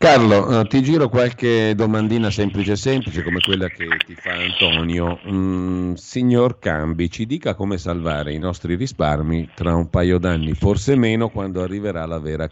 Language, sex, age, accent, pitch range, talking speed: Italian, male, 40-59, native, 80-100 Hz, 165 wpm